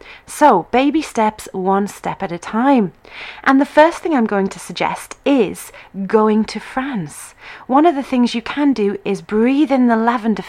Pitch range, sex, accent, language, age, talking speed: 195-255 Hz, female, British, English, 30-49, 185 wpm